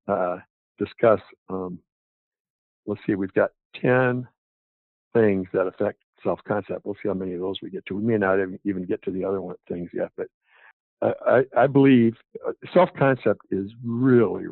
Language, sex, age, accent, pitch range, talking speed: English, male, 60-79, American, 95-110 Hz, 160 wpm